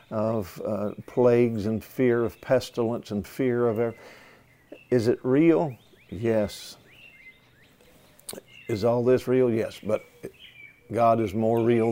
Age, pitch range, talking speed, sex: 50-69, 115-135 Hz, 125 wpm, male